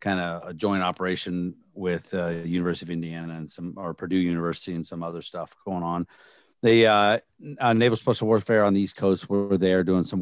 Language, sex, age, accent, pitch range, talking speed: English, male, 40-59, American, 90-110 Hz, 210 wpm